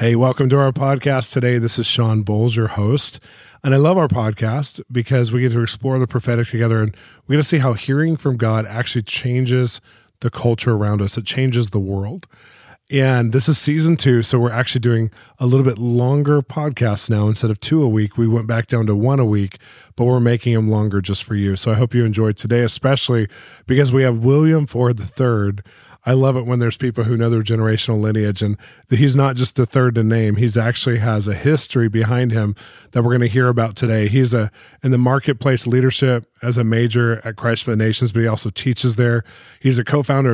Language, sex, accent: English, male, American